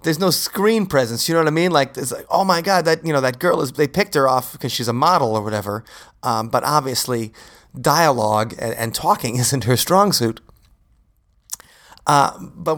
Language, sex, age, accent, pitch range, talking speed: English, male, 30-49, American, 120-150 Hz, 200 wpm